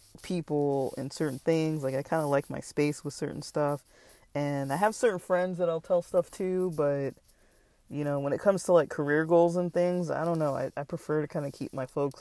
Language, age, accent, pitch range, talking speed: English, 20-39, American, 135-165 Hz, 235 wpm